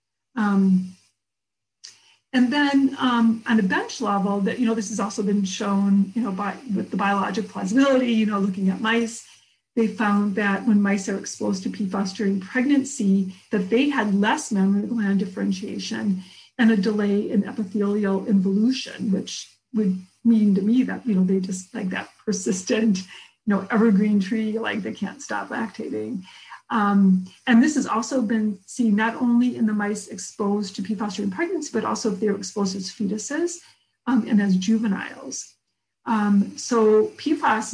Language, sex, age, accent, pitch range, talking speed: English, female, 40-59, American, 200-235 Hz, 170 wpm